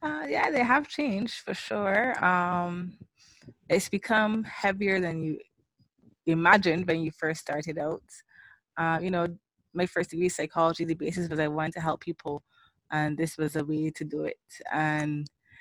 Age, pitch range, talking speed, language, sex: 20-39, 160-190 Hz, 165 wpm, English, female